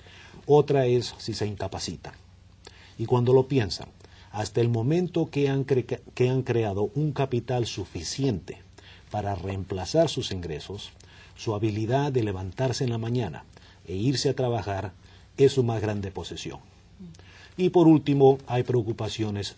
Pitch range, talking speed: 95-125 Hz, 135 wpm